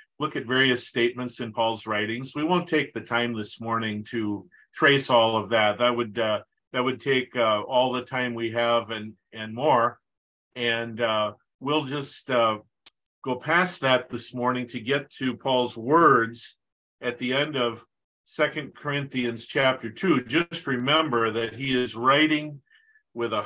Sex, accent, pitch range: male, American, 115-145 Hz